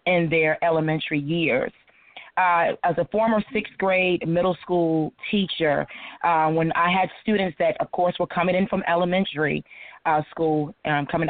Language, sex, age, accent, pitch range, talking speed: English, female, 30-49, American, 160-190 Hz, 160 wpm